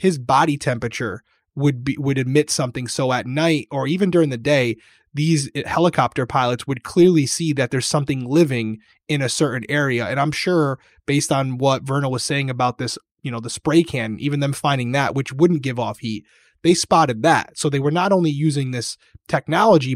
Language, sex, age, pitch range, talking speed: English, male, 20-39, 130-165 Hz, 200 wpm